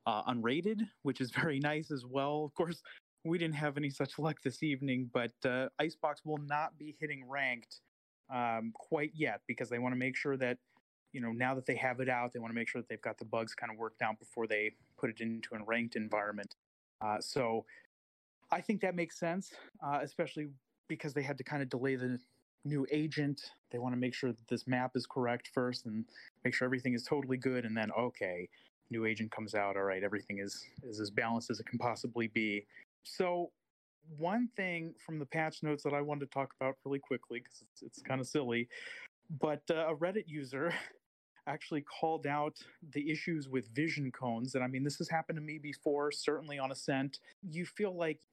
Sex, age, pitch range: male, 30-49, 125-155 Hz